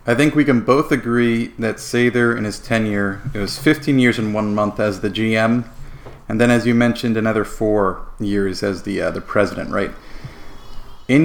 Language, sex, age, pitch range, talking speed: English, male, 40-59, 105-125 Hz, 190 wpm